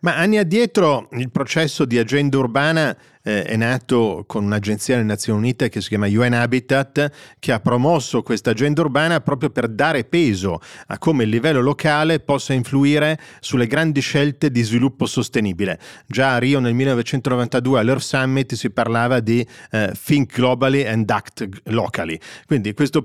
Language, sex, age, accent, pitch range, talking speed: Italian, male, 40-59, native, 110-145 Hz, 160 wpm